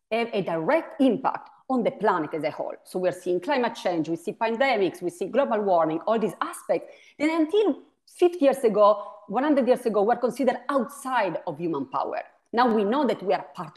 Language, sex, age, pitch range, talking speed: English, female, 40-59, 195-295 Hz, 200 wpm